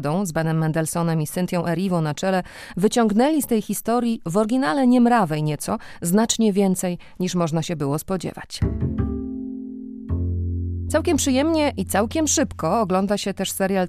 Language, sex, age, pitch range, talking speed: Polish, female, 30-49, 170-220 Hz, 140 wpm